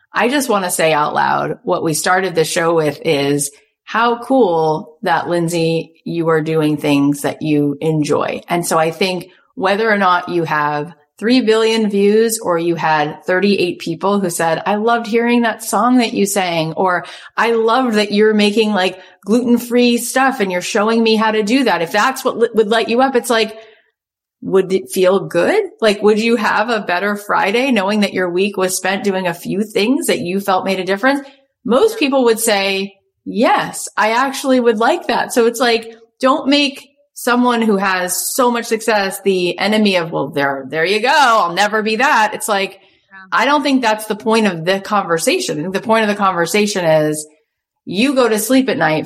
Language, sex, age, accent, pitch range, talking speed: English, female, 30-49, American, 170-230 Hz, 195 wpm